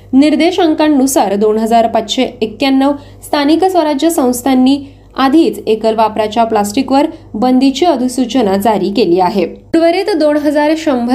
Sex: female